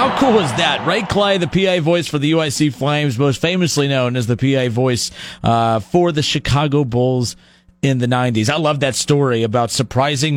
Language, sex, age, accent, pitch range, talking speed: English, male, 30-49, American, 120-150 Hz, 195 wpm